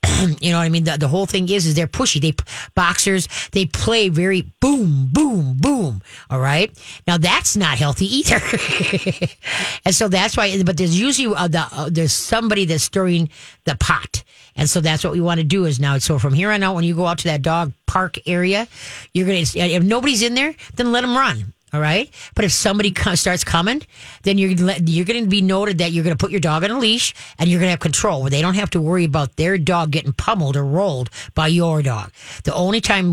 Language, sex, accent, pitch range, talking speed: English, female, American, 150-195 Hz, 235 wpm